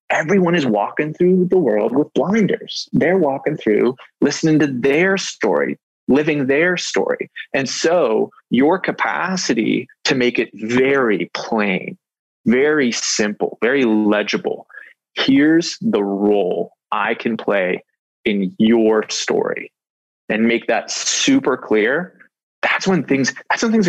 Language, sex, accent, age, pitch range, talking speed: English, male, American, 20-39, 110-180 Hz, 130 wpm